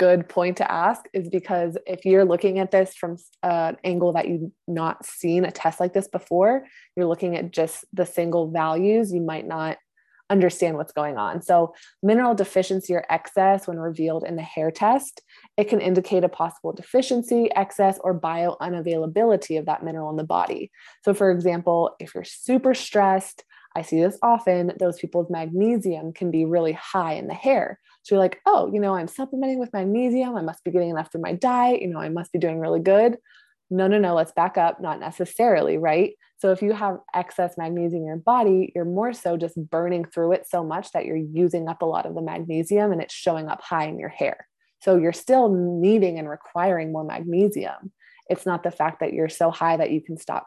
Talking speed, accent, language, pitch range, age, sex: 210 wpm, American, English, 165-195 Hz, 20-39, female